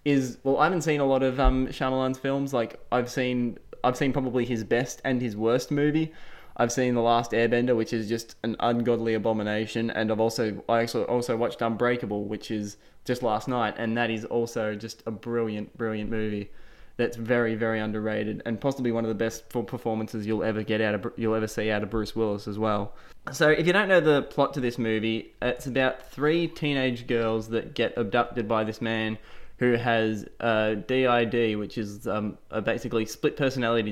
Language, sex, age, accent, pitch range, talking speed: English, male, 20-39, Australian, 110-125 Hz, 195 wpm